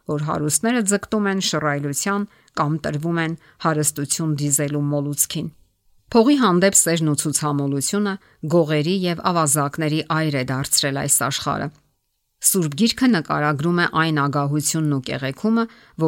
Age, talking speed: 50-69, 95 wpm